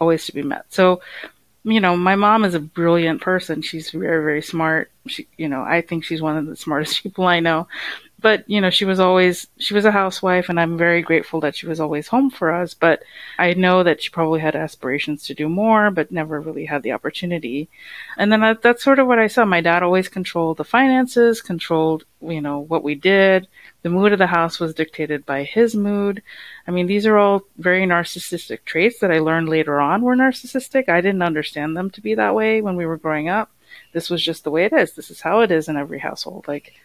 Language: English